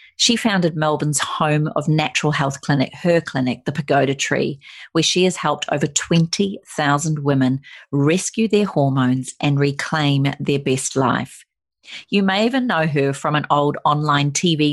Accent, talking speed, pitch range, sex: Australian, 155 wpm, 140-165 Hz, female